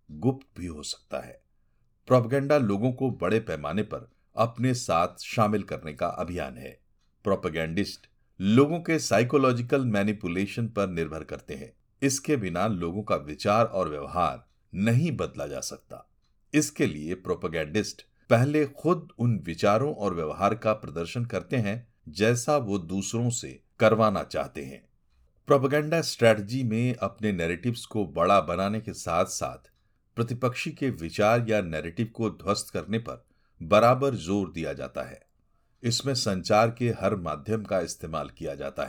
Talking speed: 140 wpm